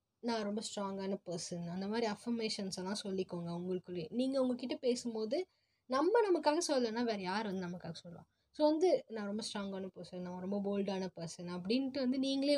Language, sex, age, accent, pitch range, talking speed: Tamil, female, 20-39, native, 185-245 Hz, 160 wpm